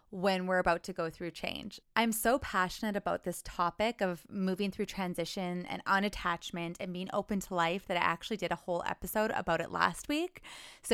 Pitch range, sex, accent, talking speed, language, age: 180-225 Hz, female, American, 195 wpm, English, 20-39